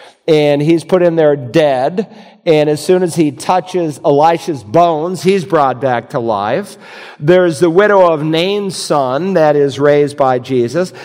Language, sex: English, male